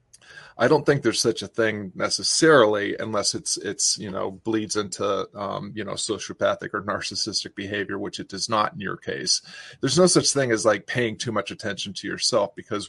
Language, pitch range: English, 105-125 Hz